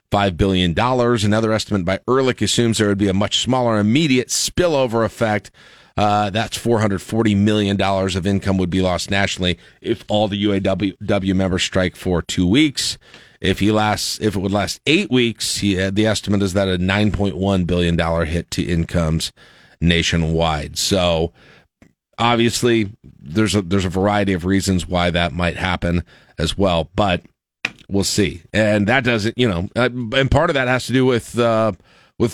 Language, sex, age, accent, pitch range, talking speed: English, male, 40-59, American, 95-115 Hz, 180 wpm